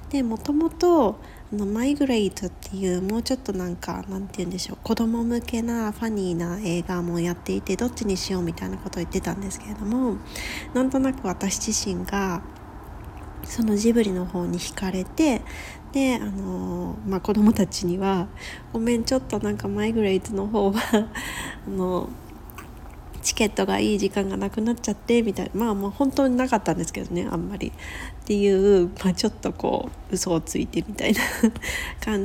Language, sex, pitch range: Japanese, female, 185-235 Hz